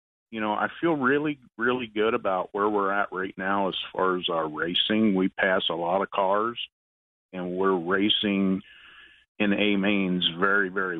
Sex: male